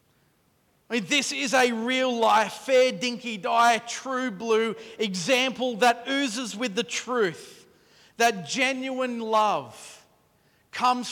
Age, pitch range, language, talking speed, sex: 40-59, 185-235 Hz, English, 85 wpm, male